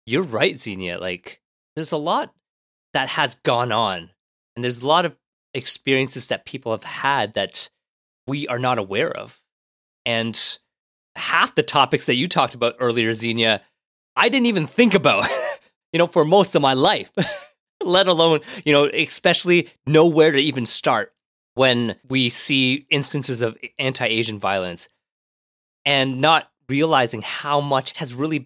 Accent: American